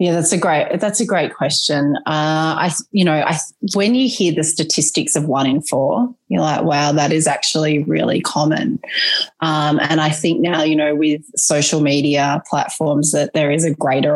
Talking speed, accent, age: 195 wpm, Australian, 20-39